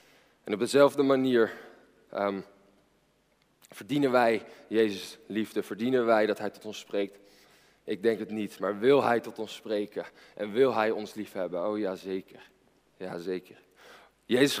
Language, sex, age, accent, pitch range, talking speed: Dutch, male, 20-39, Dutch, 100-115 Hz, 150 wpm